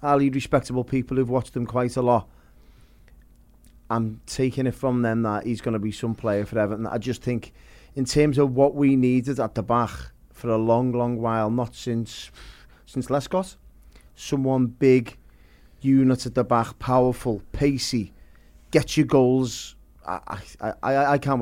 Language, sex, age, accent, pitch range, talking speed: English, male, 30-49, British, 110-135 Hz, 165 wpm